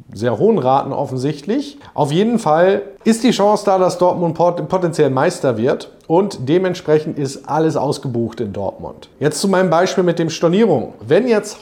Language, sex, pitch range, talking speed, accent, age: German, male, 135-180 Hz, 165 wpm, German, 40-59